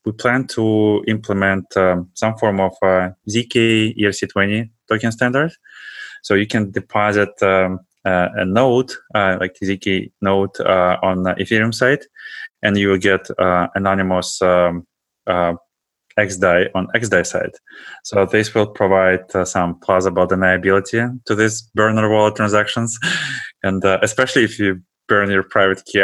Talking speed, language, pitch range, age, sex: 150 wpm, English, 95-110 Hz, 20-39, male